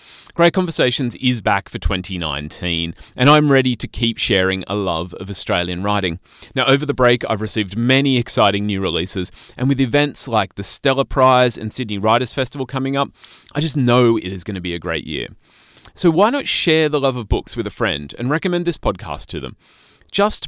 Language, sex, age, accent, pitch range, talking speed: English, male, 30-49, Australian, 100-155 Hz, 200 wpm